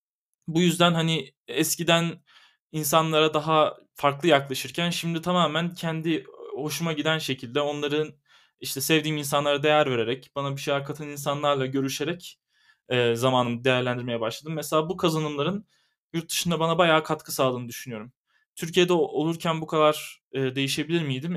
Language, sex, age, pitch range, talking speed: Turkish, male, 20-39, 135-160 Hz, 125 wpm